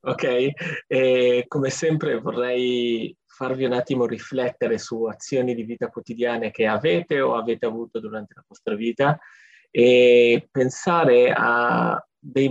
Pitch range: 120-160 Hz